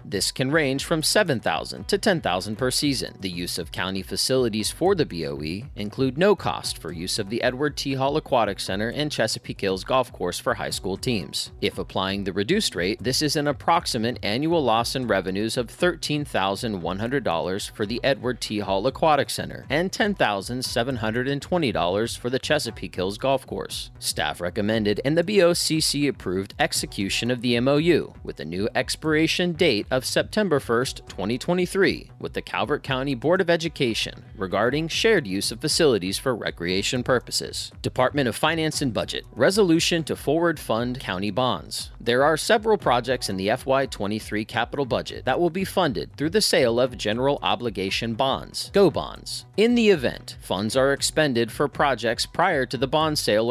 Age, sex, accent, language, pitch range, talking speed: 30-49, male, American, English, 105-150 Hz, 165 wpm